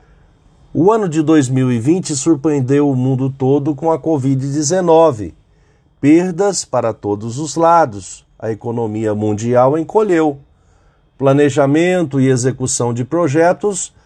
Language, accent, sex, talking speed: Portuguese, Brazilian, male, 105 wpm